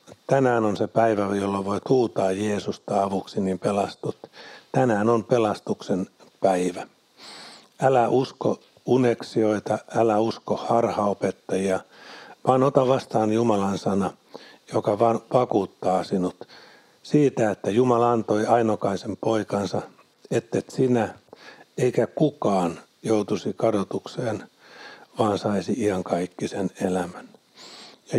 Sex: male